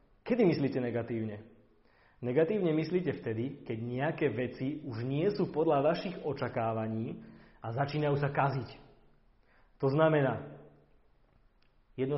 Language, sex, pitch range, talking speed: Slovak, male, 120-145 Hz, 110 wpm